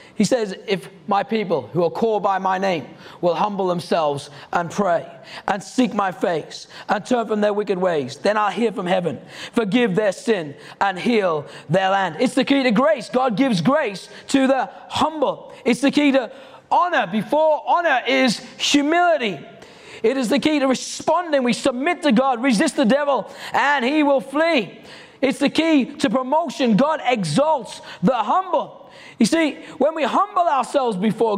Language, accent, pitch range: English, British, 190-270 Hz